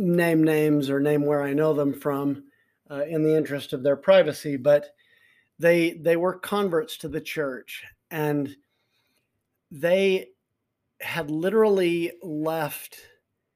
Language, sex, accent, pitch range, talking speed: English, male, American, 140-165 Hz, 130 wpm